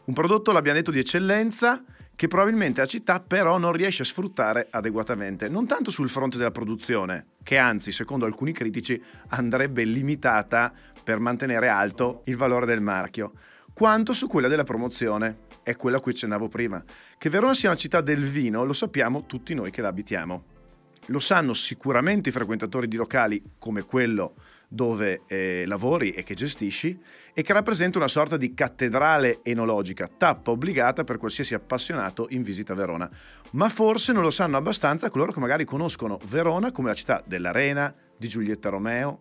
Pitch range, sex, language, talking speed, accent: 115-165 Hz, male, Italian, 170 wpm, native